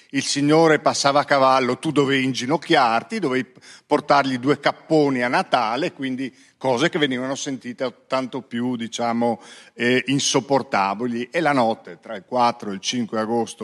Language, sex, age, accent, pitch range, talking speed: Italian, male, 50-69, native, 110-145 Hz, 150 wpm